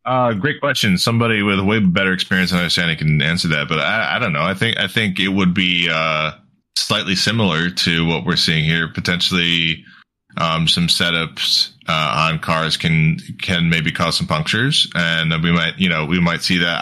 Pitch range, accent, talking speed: 80-100 Hz, American, 200 wpm